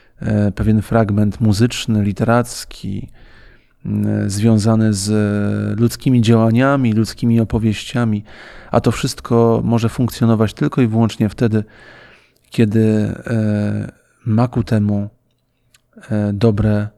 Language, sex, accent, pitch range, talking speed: Polish, male, native, 105-120 Hz, 85 wpm